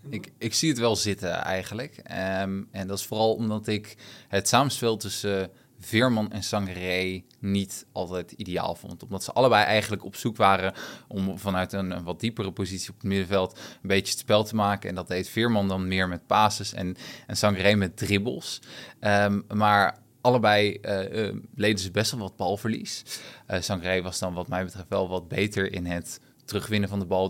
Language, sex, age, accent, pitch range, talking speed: Dutch, male, 20-39, Dutch, 95-110 Hz, 185 wpm